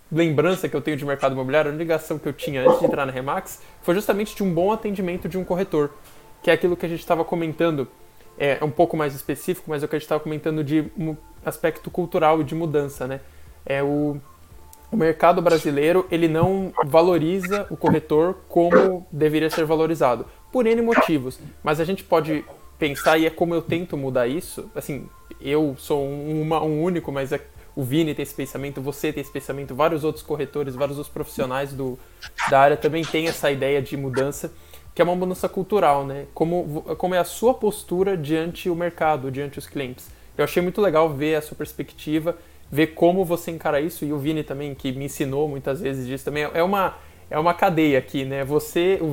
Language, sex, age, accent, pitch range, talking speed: Portuguese, male, 20-39, Brazilian, 145-170 Hz, 210 wpm